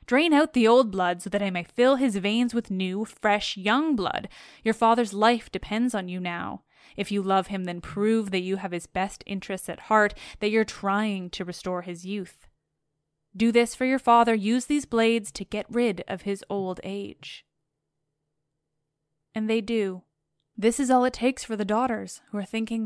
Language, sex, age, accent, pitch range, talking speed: English, female, 10-29, American, 185-225 Hz, 195 wpm